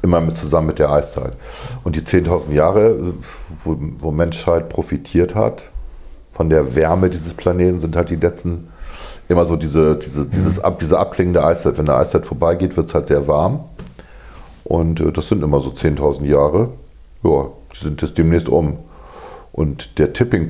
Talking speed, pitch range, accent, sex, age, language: 170 wpm, 75-85 Hz, German, male, 50-69, German